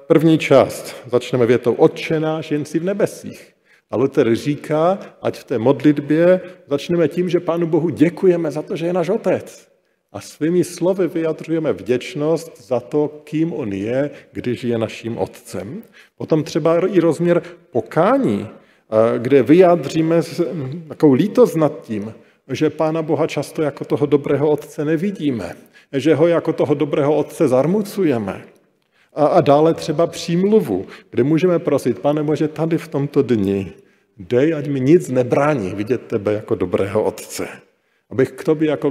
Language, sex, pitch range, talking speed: Slovak, male, 135-165 Hz, 150 wpm